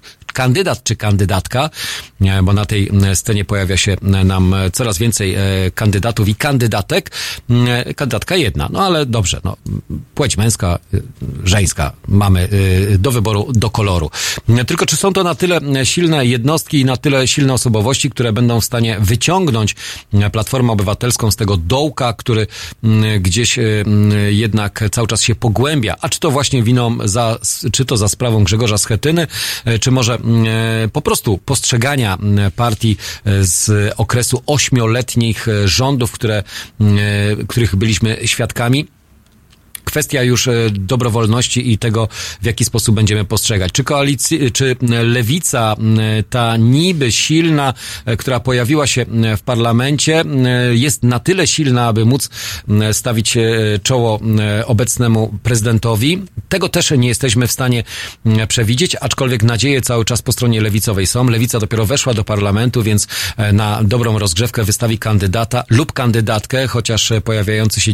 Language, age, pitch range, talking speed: Polish, 40-59, 105-125 Hz, 130 wpm